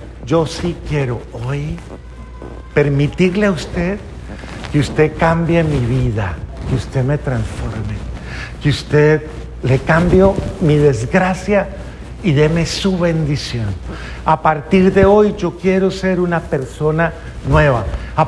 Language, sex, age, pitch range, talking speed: Spanish, male, 50-69, 135-205 Hz, 120 wpm